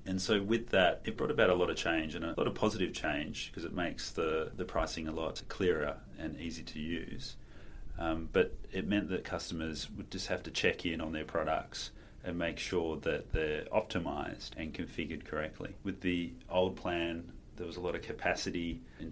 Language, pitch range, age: English, 80-90 Hz, 30-49